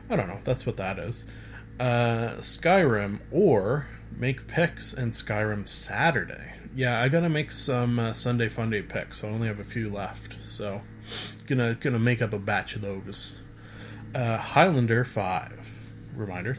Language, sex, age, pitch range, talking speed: English, male, 30-49, 110-130 Hz, 155 wpm